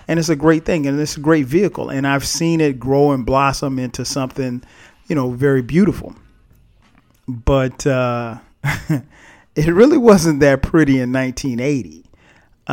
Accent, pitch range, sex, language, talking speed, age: American, 130-160 Hz, male, English, 150 wpm, 40-59